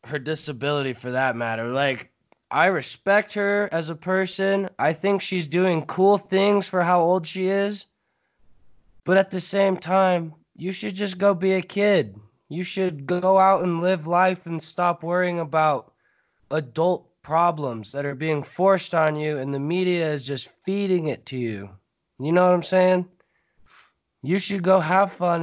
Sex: male